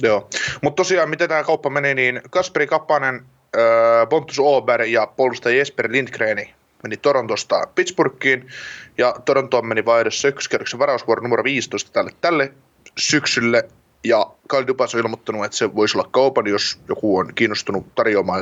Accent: native